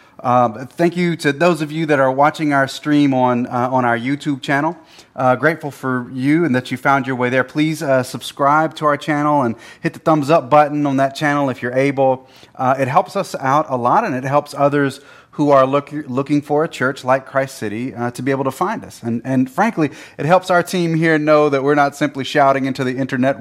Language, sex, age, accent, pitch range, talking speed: English, male, 30-49, American, 120-145 Hz, 235 wpm